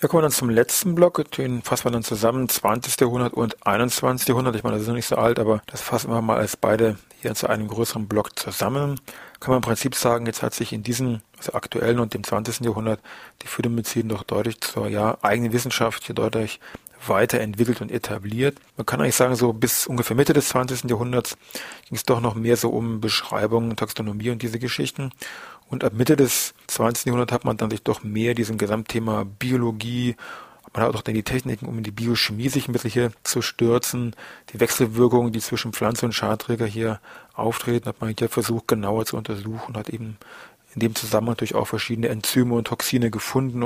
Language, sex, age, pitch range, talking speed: German, male, 40-59, 110-125 Hz, 205 wpm